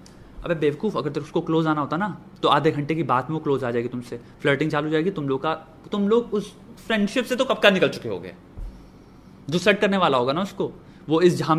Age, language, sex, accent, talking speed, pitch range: 30-49, Hindi, male, native, 105 wpm, 150-210 Hz